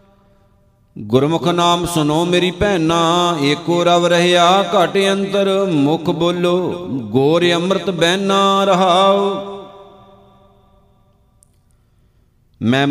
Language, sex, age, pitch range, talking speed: Punjabi, male, 50-69, 165-195 Hz, 80 wpm